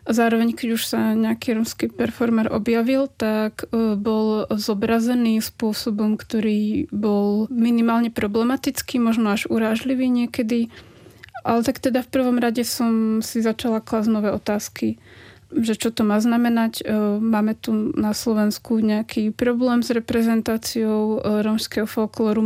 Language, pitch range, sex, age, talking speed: Czech, 215-230 Hz, female, 30-49, 125 wpm